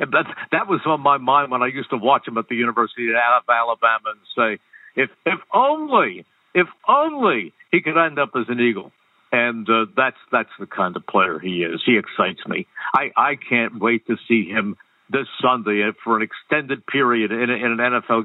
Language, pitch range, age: English, 115-140 Hz, 60-79